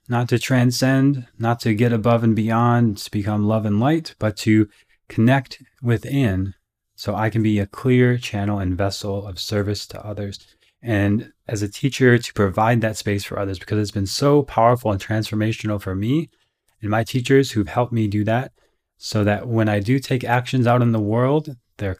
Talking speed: 190 wpm